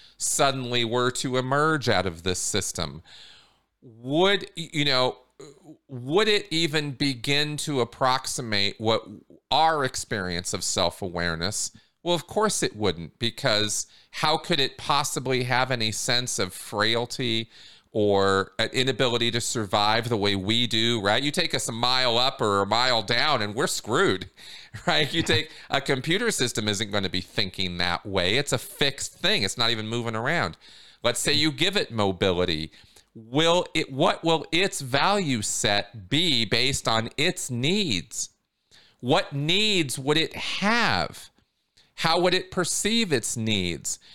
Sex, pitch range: male, 105-150 Hz